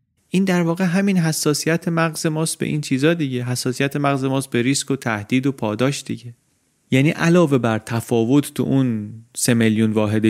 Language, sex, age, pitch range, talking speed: Persian, male, 30-49, 110-140 Hz, 175 wpm